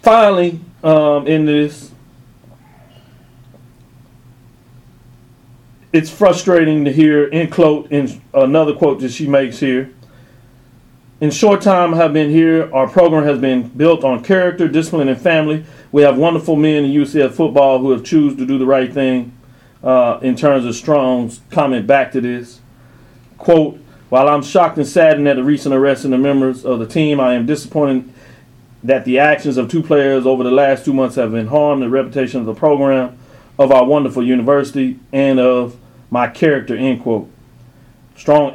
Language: English